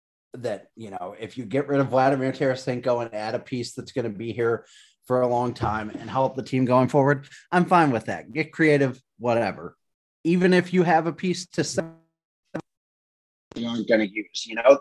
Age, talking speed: 30-49, 205 wpm